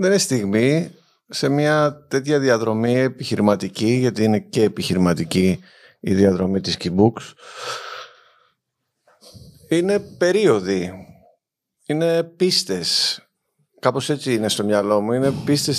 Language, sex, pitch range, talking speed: Greek, male, 95-120 Hz, 105 wpm